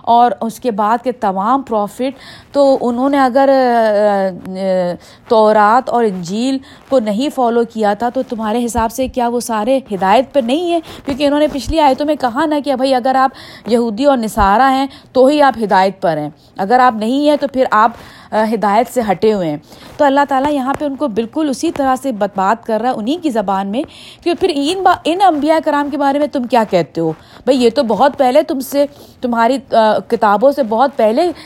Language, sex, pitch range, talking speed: Urdu, female, 205-265 Hz, 210 wpm